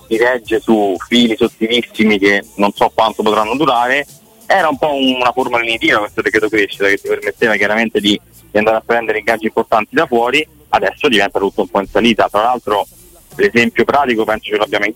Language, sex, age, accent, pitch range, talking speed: Italian, male, 20-39, native, 100-115 Hz, 190 wpm